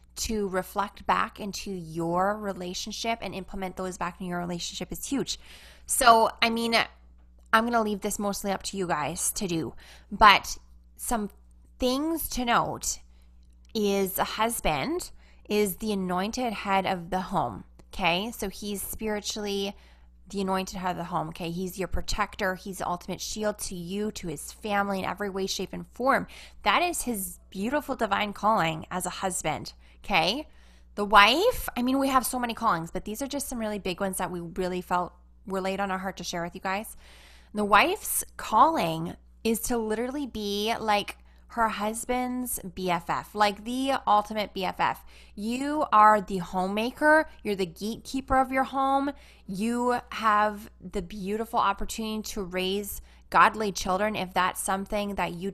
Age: 20-39